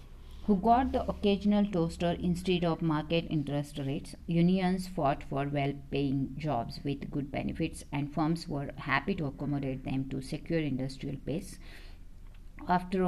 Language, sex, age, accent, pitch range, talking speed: English, female, 50-69, Indian, 145-170 Hz, 140 wpm